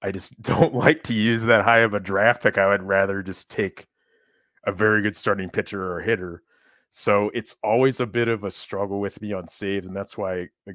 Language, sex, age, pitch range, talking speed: English, male, 30-49, 95-110 Hz, 225 wpm